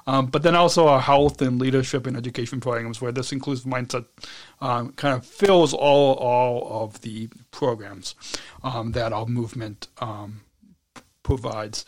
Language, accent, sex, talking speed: English, American, male, 150 wpm